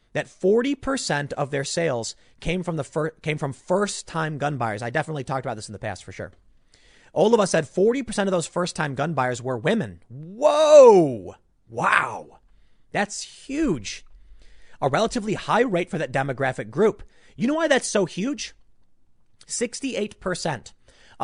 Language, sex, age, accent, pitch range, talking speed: English, male, 30-49, American, 130-195 Hz, 155 wpm